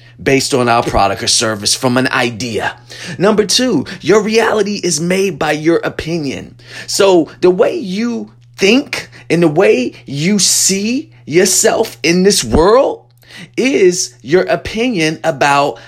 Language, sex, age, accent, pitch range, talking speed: English, male, 30-49, American, 130-190 Hz, 135 wpm